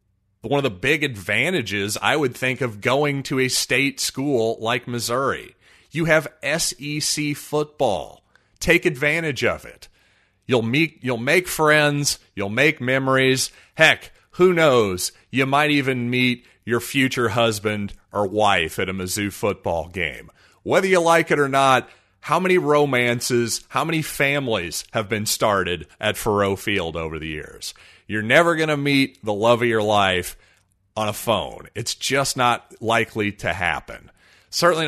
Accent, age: American, 30-49